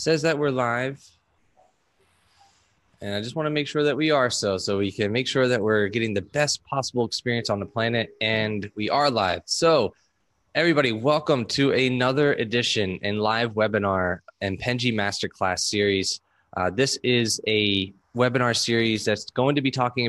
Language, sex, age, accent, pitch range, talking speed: English, male, 20-39, American, 105-130 Hz, 175 wpm